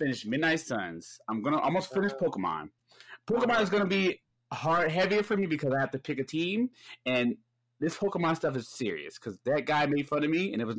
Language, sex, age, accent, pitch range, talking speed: English, male, 20-39, American, 115-155 Hz, 215 wpm